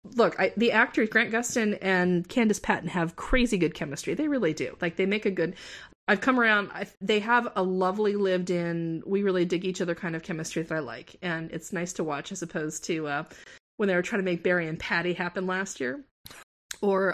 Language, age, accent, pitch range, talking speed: English, 30-49, American, 180-230 Hz, 200 wpm